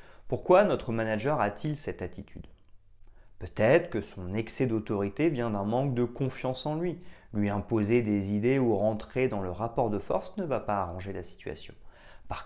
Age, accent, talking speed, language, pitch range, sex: 30-49, French, 175 wpm, French, 95-125 Hz, male